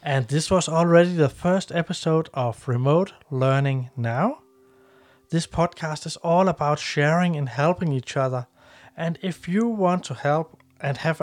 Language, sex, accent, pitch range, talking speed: English, male, Danish, 140-175 Hz, 155 wpm